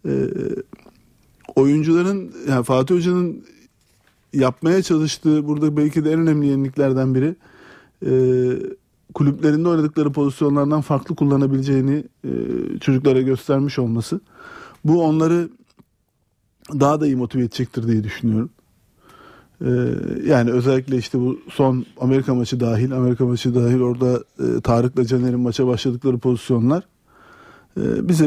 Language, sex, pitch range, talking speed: Turkish, male, 125-160 Hz, 115 wpm